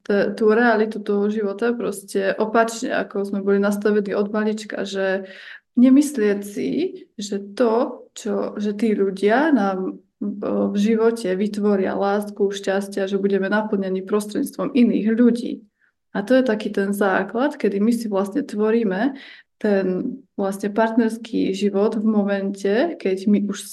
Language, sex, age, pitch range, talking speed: Slovak, female, 20-39, 200-230 Hz, 135 wpm